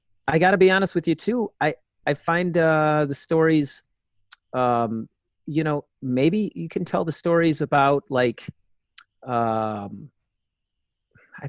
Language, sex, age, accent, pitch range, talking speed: English, male, 30-49, American, 120-160 Hz, 135 wpm